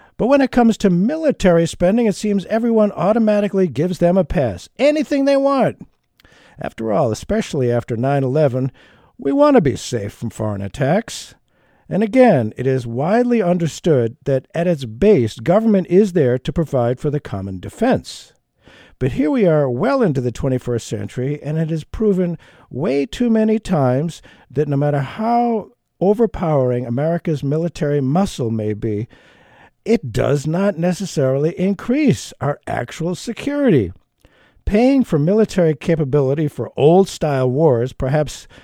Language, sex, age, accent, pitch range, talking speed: English, male, 50-69, American, 125-200 Hz, 145 wpm